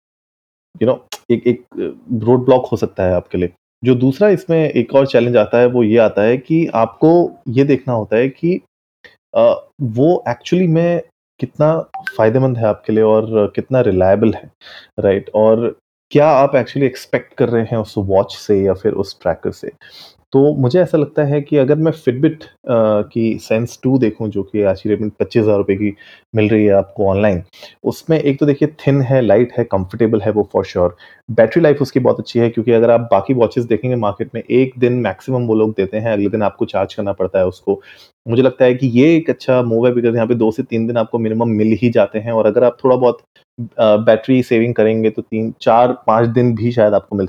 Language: Hindi